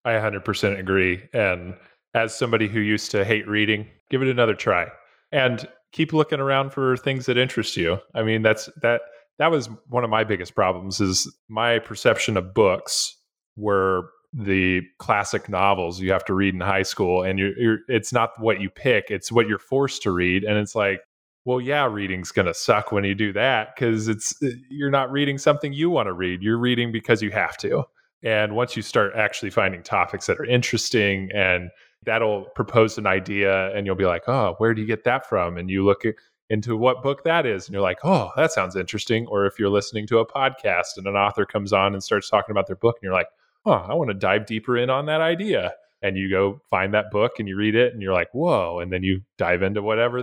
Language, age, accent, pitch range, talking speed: English, 20-39, American, 95-125 Hz, 220 wpm